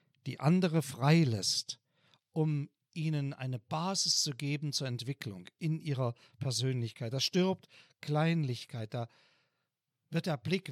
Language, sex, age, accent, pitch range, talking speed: German, male, 50-69, German, 130-170 Hz, 120 wpm